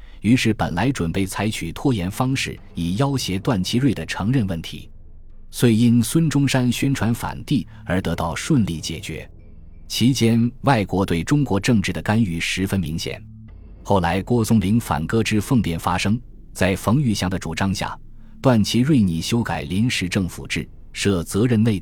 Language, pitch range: Chinese, 85-115 Hz